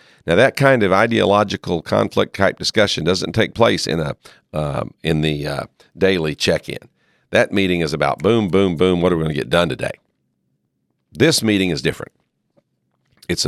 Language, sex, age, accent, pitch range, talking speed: English, male, 50-69, American, 80-100 Hz, 170 wpm